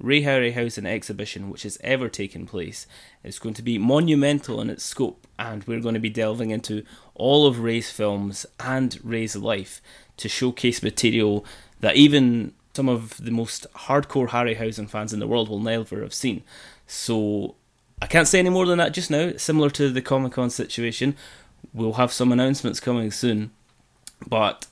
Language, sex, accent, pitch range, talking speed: English, male, British, 105-130 Hz, 170 wpm